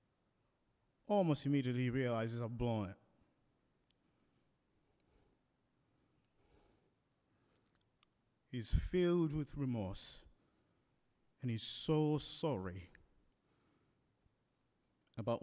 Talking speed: 60 wpm